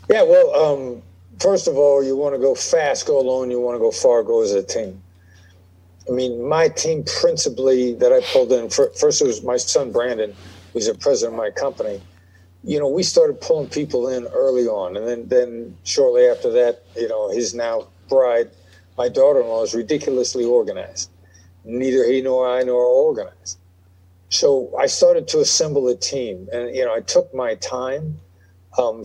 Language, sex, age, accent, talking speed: English, male, 50-69, American, 190 wpm